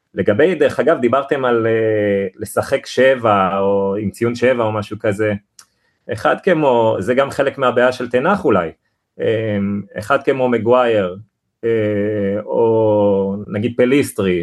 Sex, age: male, 30-49